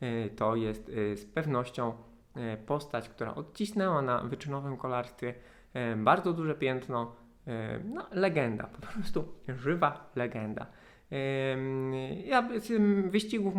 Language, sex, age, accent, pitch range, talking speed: Polish, male, 20-39, native, 125-175 Hz, 95 wpm